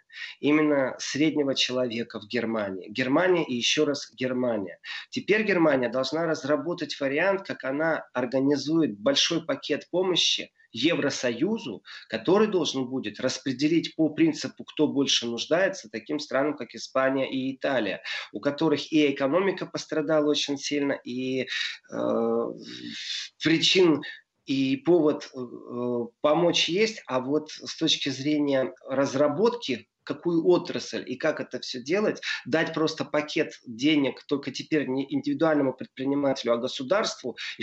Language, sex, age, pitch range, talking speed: Russian, male, 30-49, 130-160 Hz, 125 wpm